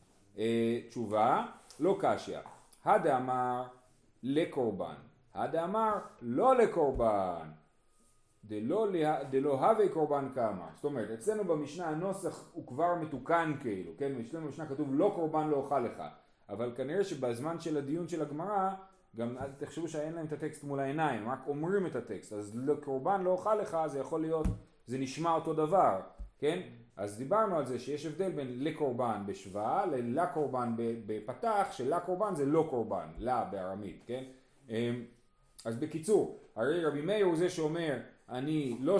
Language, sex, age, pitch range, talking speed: Hebrew, male, 30-49, 125-170 Hz, 145 wpm